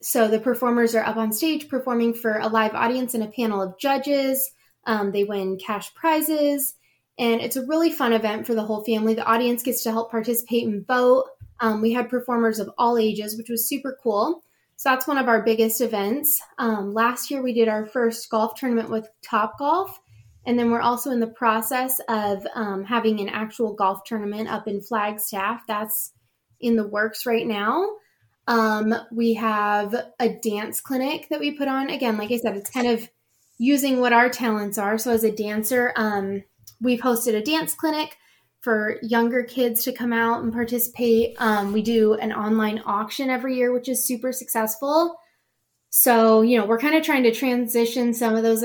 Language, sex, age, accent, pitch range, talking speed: English, female, 10-29, American, 215-250 Hz, 190 wpm